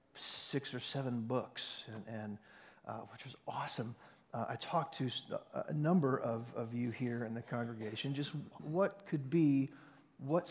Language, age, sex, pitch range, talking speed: English, 40-59, male, 115-145 Hz, 160 wpm